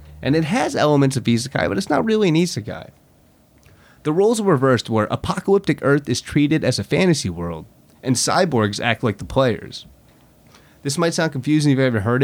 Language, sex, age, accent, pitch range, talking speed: English, male, 30-49, American, 105-150 Hz, 190 wpm